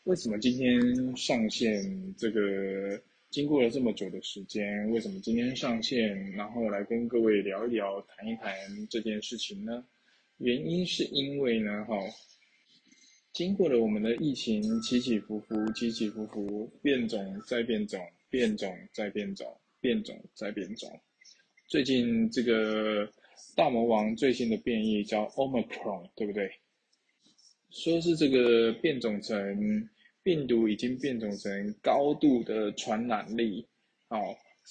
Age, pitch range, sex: 20-39, 105-125 Hz, male